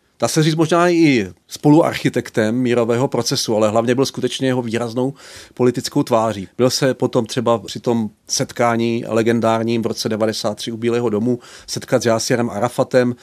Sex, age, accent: male, 40-59, native